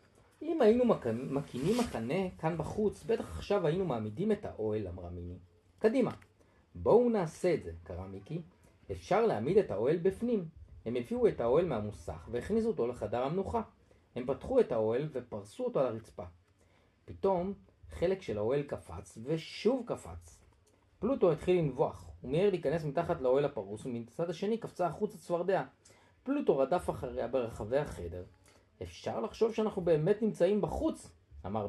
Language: Hebrew